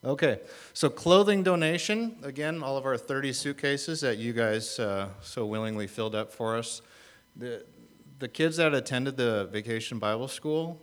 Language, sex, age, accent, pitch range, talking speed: English, male, 40-59, American, 95-120 Hz, 160 wpm